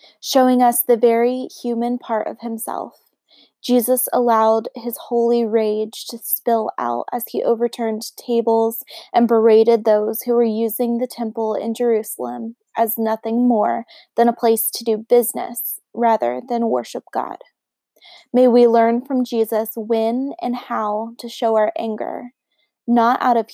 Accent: American